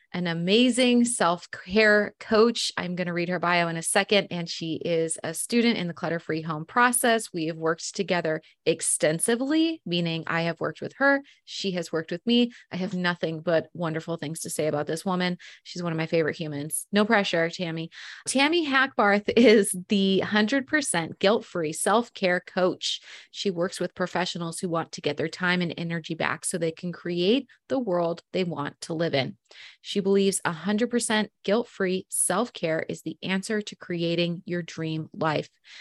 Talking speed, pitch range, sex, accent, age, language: 180 wpm, 165-210 Hz, female, American, 30-49, English